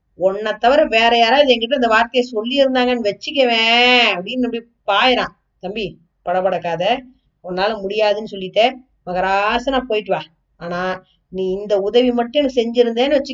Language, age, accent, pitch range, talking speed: Tamil, 20-39, native, 195-255 Hz, 125 wpm